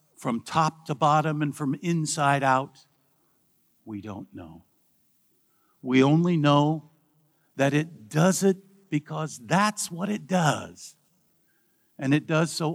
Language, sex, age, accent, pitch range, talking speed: English, male, 60-79, American, 125-155 Hz, 125 wpm